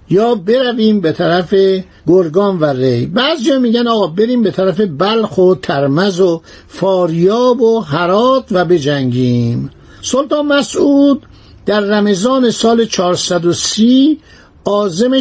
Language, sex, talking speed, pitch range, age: Persian, male, 120 wpm, 175-240 Hz, 60-79